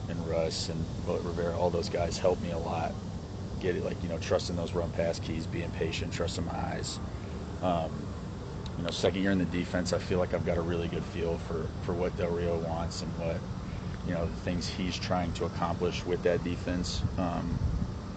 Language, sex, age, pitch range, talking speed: English, male, 30-49, 85-95 Hz, 210 wpm